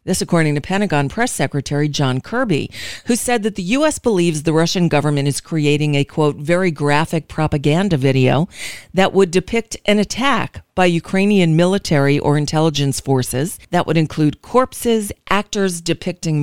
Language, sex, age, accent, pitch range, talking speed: English, female, 40-59, American, 145-190 Hz, 155 wpm